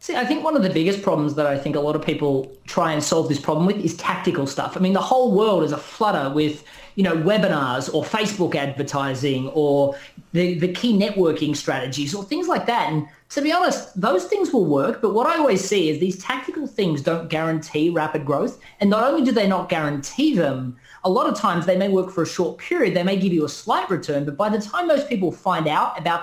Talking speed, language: 240 wpm, English